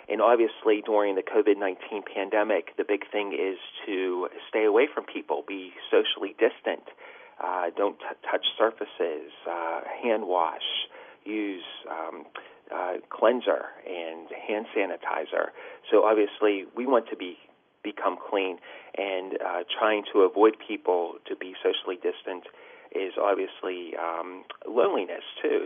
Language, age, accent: English, 40-59, American